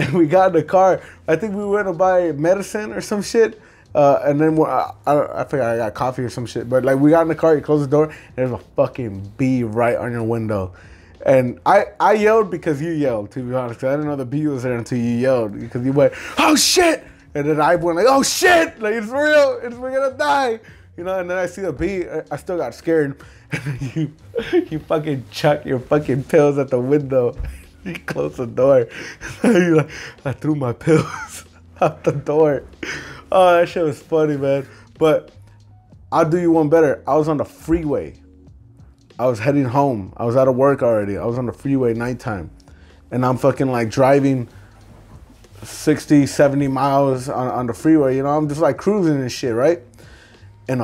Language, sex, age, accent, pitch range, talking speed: English, male, 20-39, American, 120-160 Hz, 210 wpm